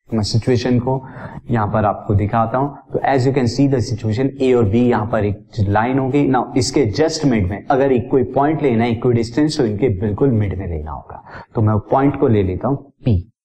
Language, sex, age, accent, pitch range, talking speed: Hindi, male, 30-49, native, 110-140 Hz, 175 wpm